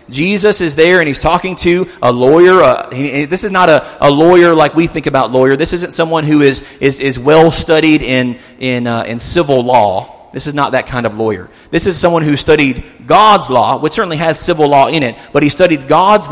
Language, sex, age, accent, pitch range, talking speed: English, male, 40-59, American, 140-185 Hz, 225 wpm